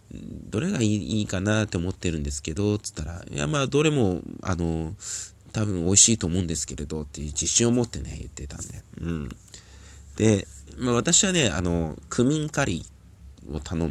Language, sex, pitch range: Japanese, male, 85-115 Hz